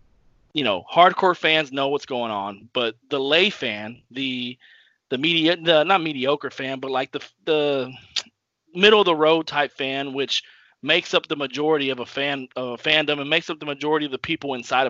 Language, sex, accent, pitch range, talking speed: English, male, American, 125-160 Hz, 195 wpm